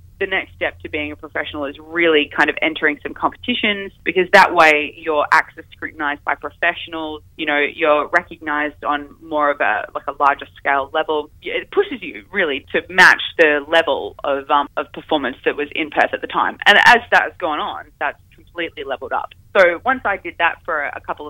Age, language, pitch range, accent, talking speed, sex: 20-39, English, 150-200 Hz, Australian, 205 wpm, female